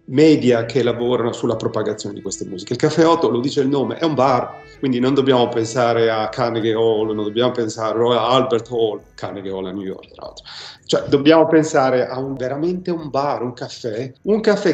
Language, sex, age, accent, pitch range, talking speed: Italian, male, 40-59, native, 115-150 Hz, 205 wpm